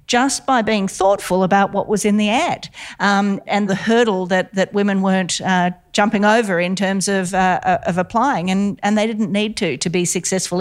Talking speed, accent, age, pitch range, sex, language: 205 wpm, Australian, 50-69, 175-210 Hz, female, English